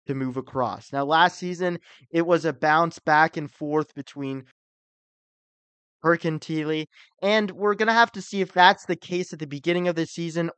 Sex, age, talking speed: male, 20-39, 195 wpm